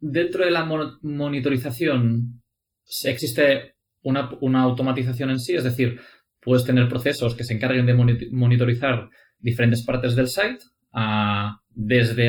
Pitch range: 115-125 Hz